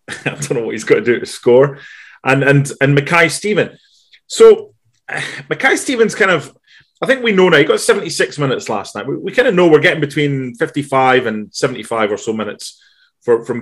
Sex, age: male, 30-49